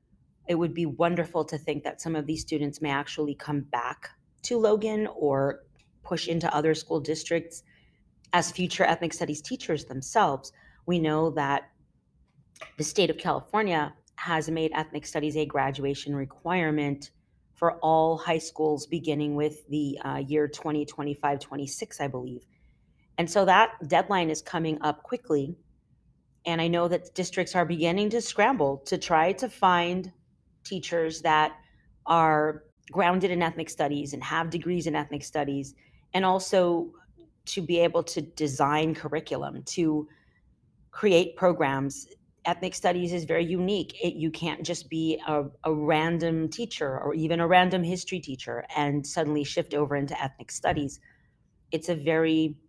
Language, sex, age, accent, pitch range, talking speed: English, female, 30-49, American, 145-170 Hz, 145 wpm